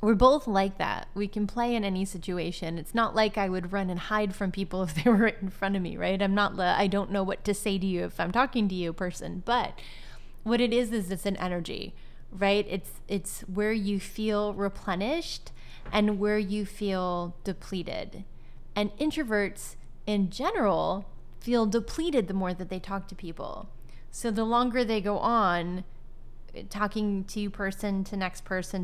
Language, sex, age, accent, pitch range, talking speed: English, female, 20-39, American, 185-225 Hz, 185 wpm